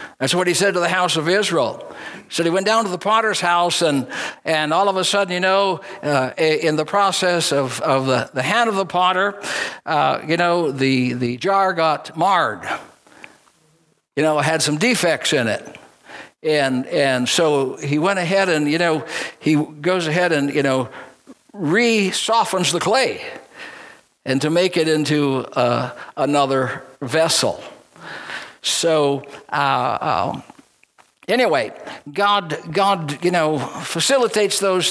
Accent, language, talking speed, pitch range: American, English, 155 wpm, 145-195 Hz